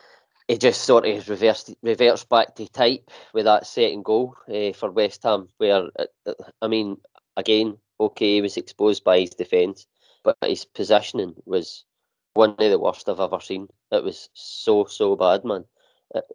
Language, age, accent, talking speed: English, 20-39, British, 175 wpm